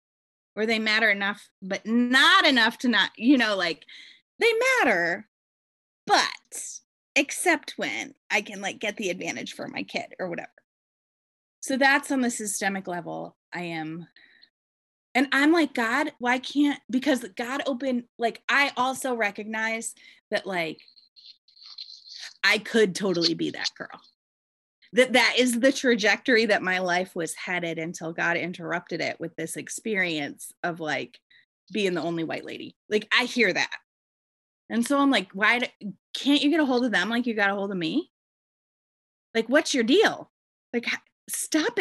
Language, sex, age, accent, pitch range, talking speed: English, female, 20-39, American, 185-265 Hz, 160 wpm